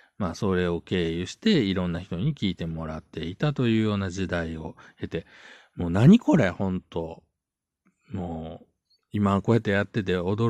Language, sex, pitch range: Japanese, male, 90-130 Hz